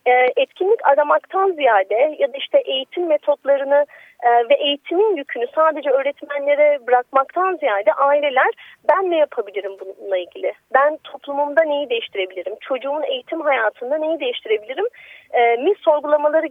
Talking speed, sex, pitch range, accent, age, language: 115 wpm, female, 255-390 Hz, native, 30-49, Turkish